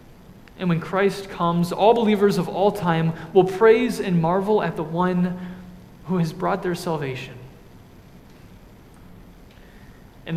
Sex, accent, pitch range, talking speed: male, American, 160-190 Hz, 125 wpm